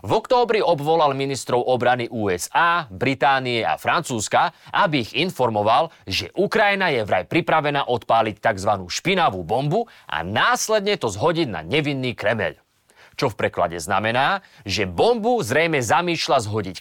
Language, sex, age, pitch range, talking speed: Slovak, male, 30-49, 120-185 Hz, 130 wpm